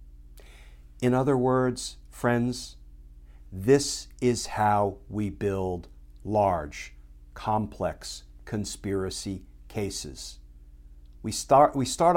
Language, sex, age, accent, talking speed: English, male, 50-69, American, 80 wpm